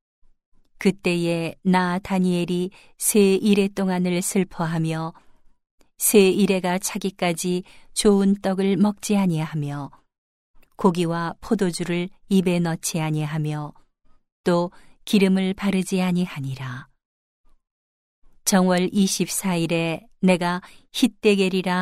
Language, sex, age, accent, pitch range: Korean, female, 40-59, native, 165-195 Hz